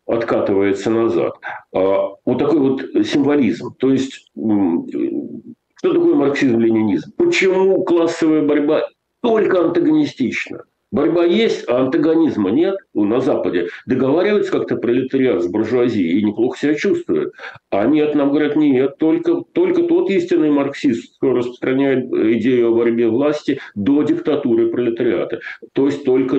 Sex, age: male, 50-69